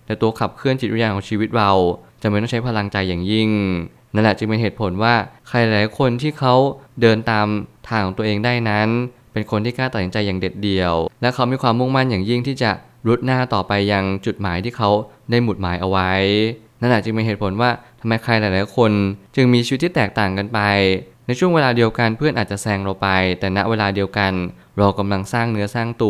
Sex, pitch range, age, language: male, 100-120 Hz, 20-39, Thai